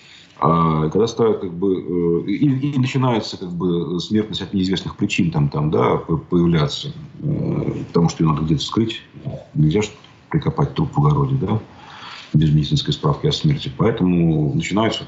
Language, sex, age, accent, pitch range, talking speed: Russian, male, 40-59, native, 85-145 Hz, 150 wpm